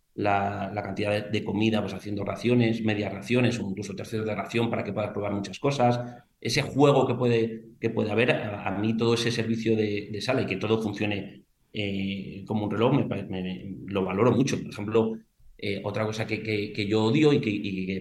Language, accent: Spanish, Spanish